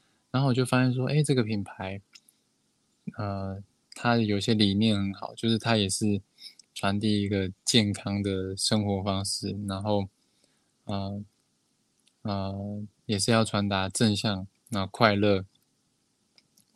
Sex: male